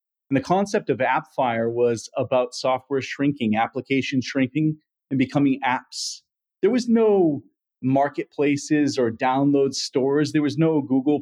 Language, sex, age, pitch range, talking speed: English, male, 30-49, 125-145 Hz, 135 wpm